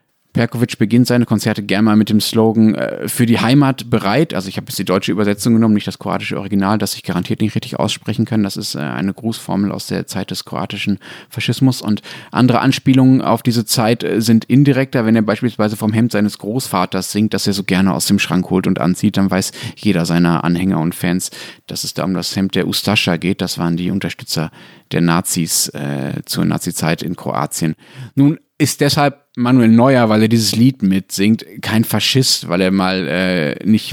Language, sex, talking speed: German, male, 205 wpm